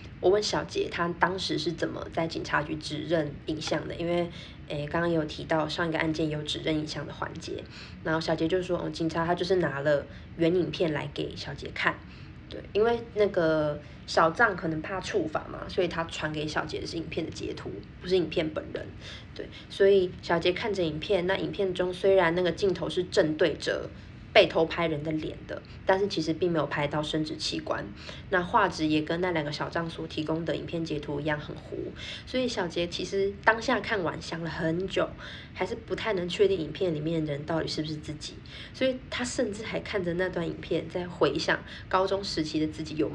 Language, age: Chinese, 20-39